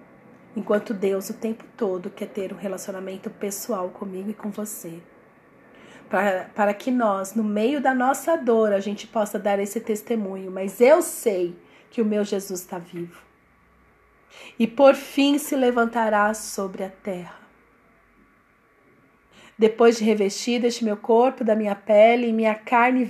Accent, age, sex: Brazilian, 40-59, female